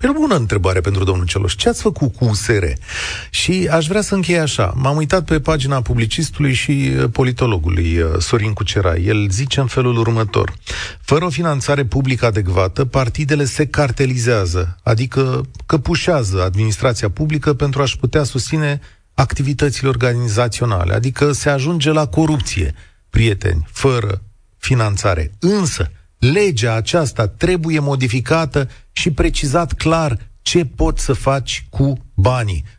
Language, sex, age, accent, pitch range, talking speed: Romanian, male, 40-59, native, 105-145 Hz, 130 wpm